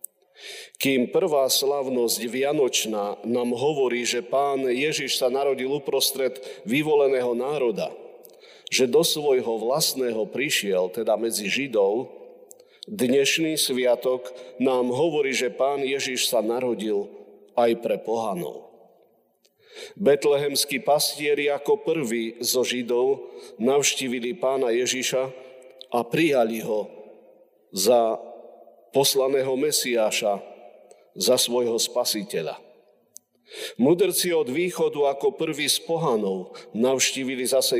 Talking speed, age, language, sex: 100 wpm, 40-59, Slovak, male